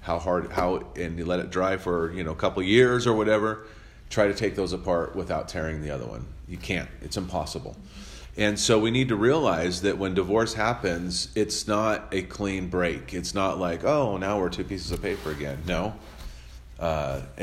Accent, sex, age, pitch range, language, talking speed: American, male, 40-59, 85-110 Hz, English, 205 wpm